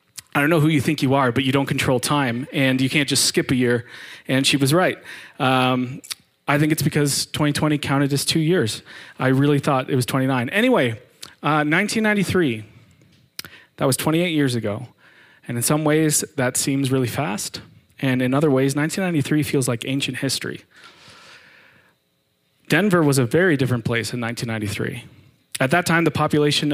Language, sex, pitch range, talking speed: English, male, 125-155 Hz, 175 wpm